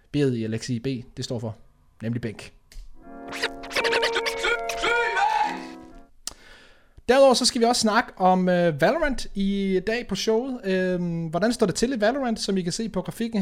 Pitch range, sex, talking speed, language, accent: 125-180 Hz, male, 155 wpm, Danish, native